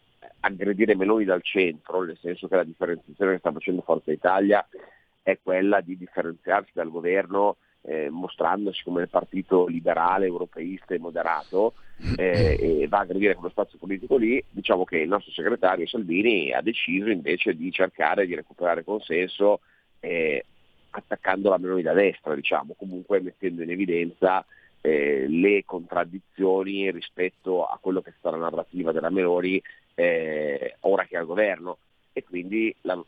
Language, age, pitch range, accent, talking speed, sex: Italian, 40-59, 90-105 Hz, native, 155 wpm, male